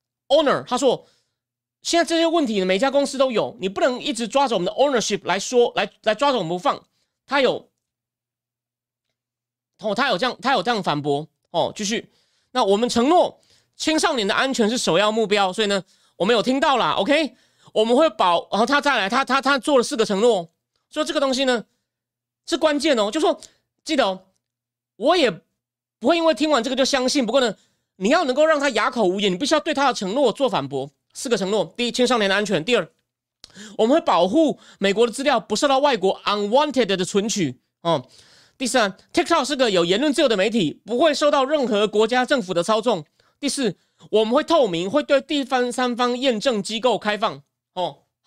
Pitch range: 175-270 Hz